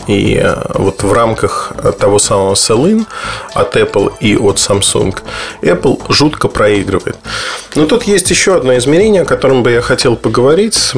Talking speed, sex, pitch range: 150 wpm, male, 105-160 Hz